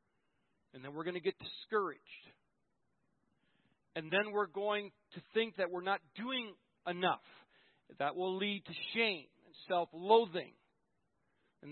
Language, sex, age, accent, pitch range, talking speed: English, male, 40-59, American, 170-220 Hz, 135 wpm